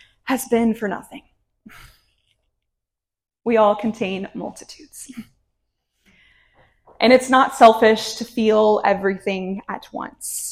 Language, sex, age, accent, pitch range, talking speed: English, female, 20-39, American, 205-250 Hz, 95 wpm